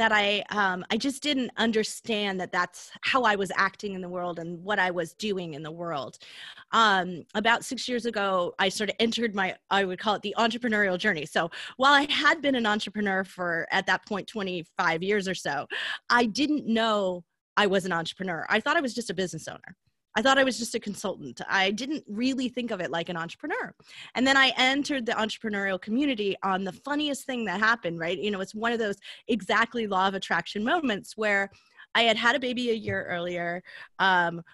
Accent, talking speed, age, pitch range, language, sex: American, 210 wpm, 30-49, 185-235 Hz, English, female